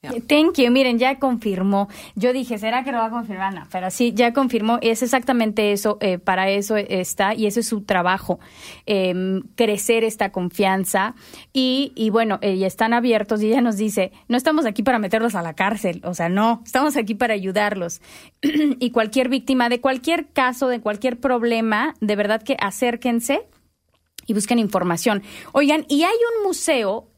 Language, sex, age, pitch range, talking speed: Spanish, female, 20-39, 200-255 Hz, 180 wpm